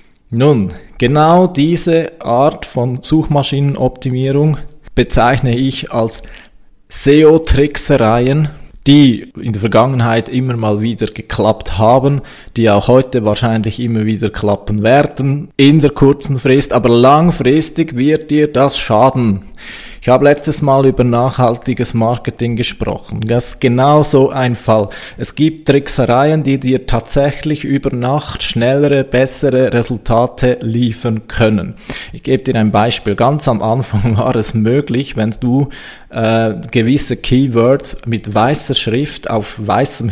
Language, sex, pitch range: German, male, 115-140 Hz